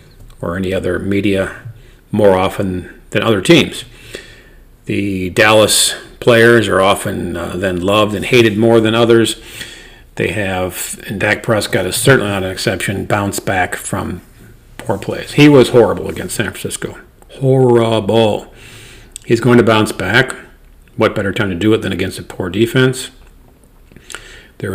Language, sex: English, male